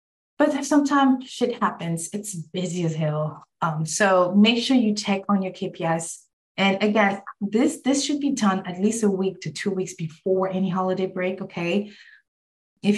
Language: English